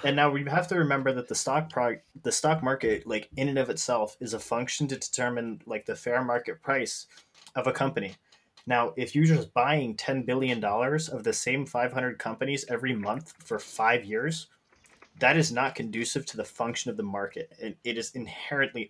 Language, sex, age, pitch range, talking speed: English, male, 20-39, 115-140 Hz, 195 wpm